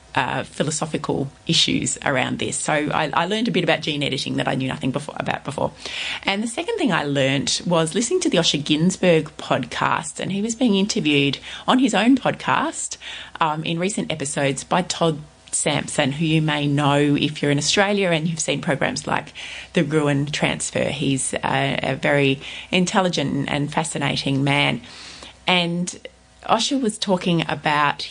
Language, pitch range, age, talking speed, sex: English, 145-185 Hz, 30-49, 165 wpm, female